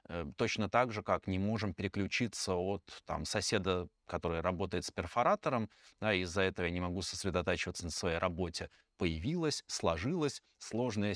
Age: 20-39